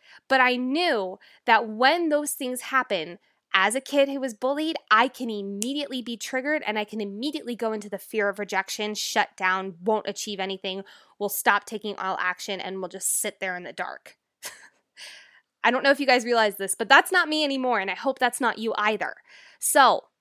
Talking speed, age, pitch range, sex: 200 wpm, 20-39, 215-295 Hz, female